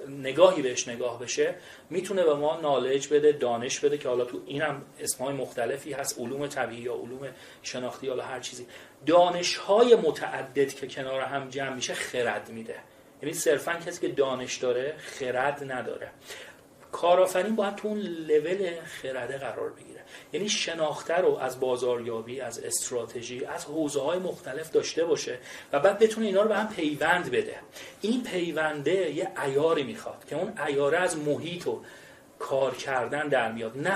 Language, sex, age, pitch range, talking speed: Persian, male, 30-49, 145-210 Hz, 155 wpm